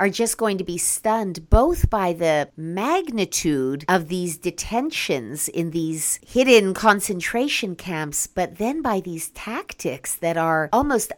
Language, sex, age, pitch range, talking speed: English, female, 50-69, 160-220 Hz, 140 wpm